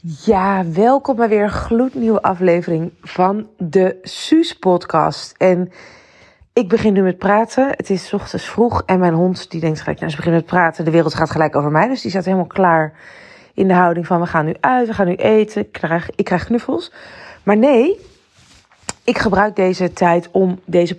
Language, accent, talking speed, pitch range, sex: Dutch, Dutch, 190 wpm, 180-235 Hz, female